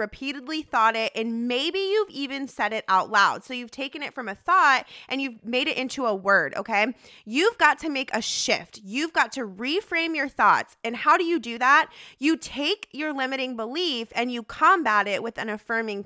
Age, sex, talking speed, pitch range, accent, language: 20-39, female, 210 wpm, 230-320 Hz, American, English